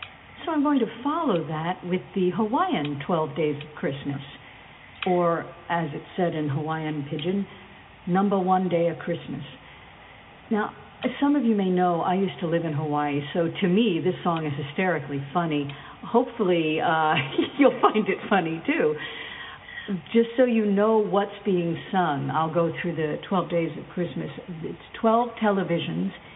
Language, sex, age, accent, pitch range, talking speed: English, female, 50-69, American, 160-210 Hz, 160 wpm